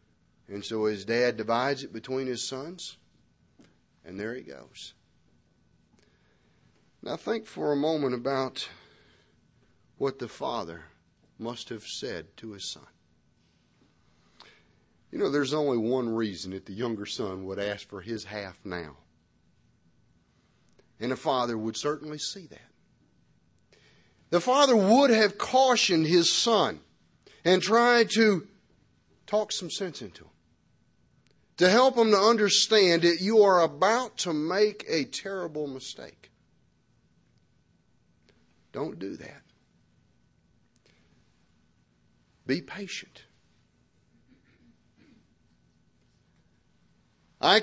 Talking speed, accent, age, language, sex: 110 wpm, American, 40-59, English, male